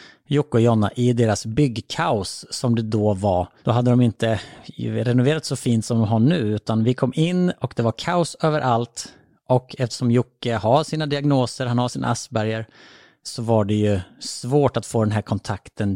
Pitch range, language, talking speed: 110-135 Hz, Swedish, 190 wpm